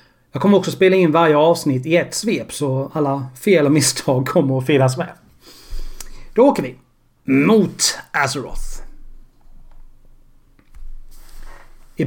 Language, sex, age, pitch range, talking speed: Swedish, male, 40-59, 130-165 Hz, 125 wpm